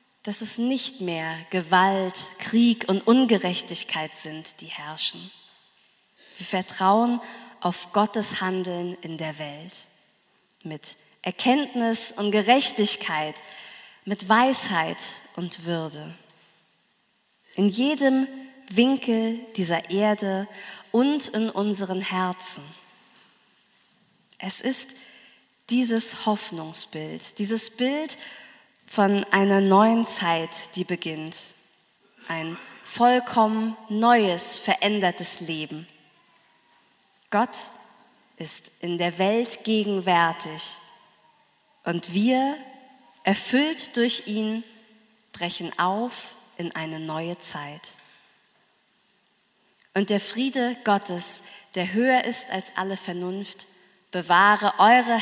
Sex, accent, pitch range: female, German, 175-230 Hz